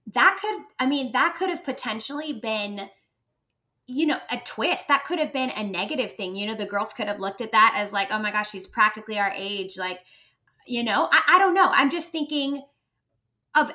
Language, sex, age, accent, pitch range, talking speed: English, female, 10-29, American, 210-285 Hz, 215 wpm